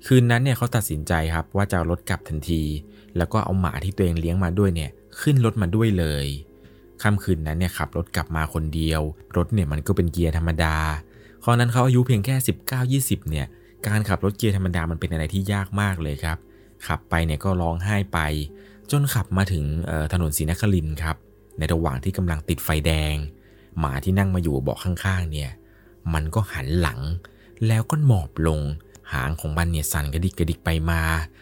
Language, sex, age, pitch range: Thai, male, 20-39, 80-105 Hz